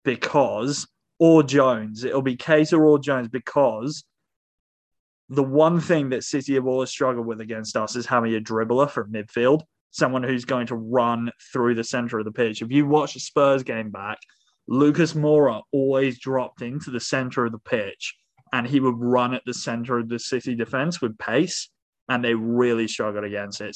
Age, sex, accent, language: 20-39, male, British, English